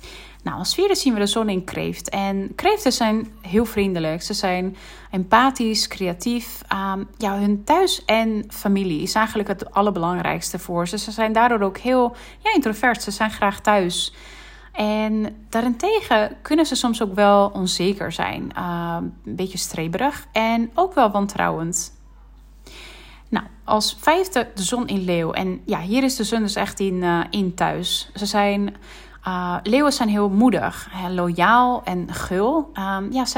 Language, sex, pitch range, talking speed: Dutch, female, 190-245 Hz, 160 wpm